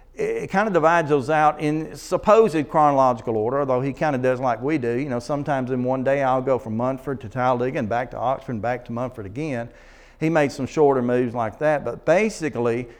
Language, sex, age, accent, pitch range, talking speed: English, male, 50-69, American, 120-150 Hz, 220 wpm